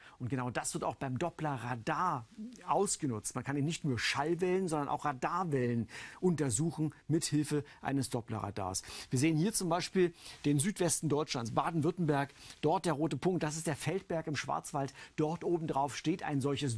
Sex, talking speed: male, 170 wpm